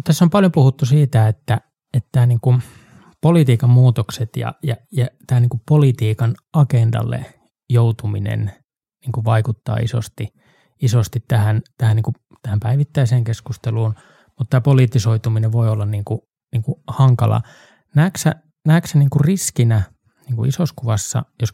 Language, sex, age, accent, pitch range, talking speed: Finnish, male, 20-39, native, 115-135 Hz, 150 wpm